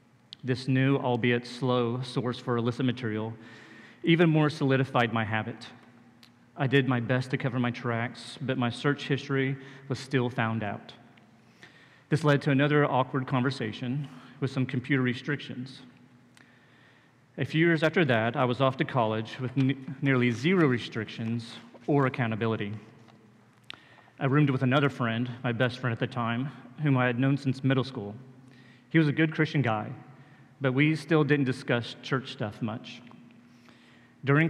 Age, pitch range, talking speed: 40-59, 120-135 Hz, 155 wpm